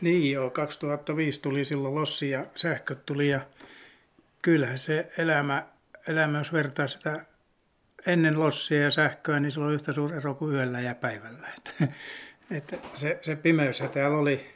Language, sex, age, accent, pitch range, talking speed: Finnish, male, 60-79, native, 130-160 Hz, 155 wpm